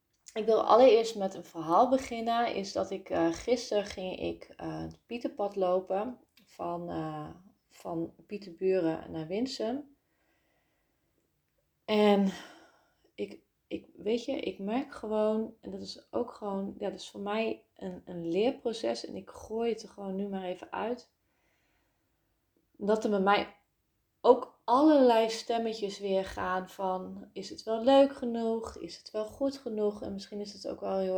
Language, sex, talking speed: Dutch, female, 160 wpm